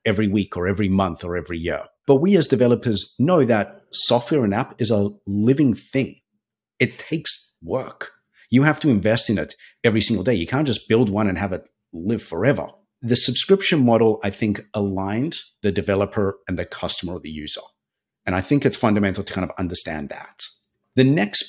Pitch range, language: 100-125 Hz, English